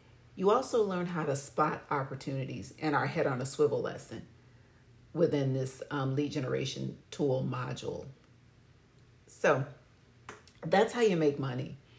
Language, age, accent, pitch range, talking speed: English, 40-59, American, 130-175 Hz, 135 wpm